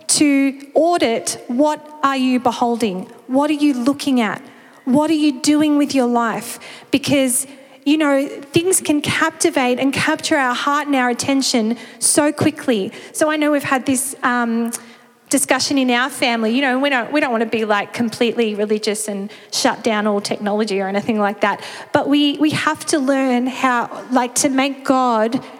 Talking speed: 180 wpm